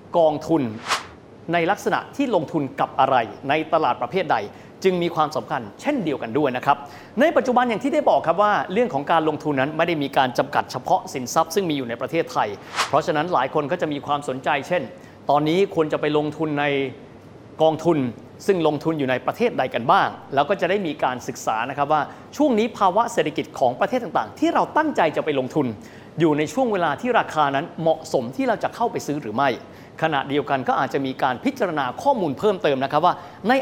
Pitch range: 140-190 Hz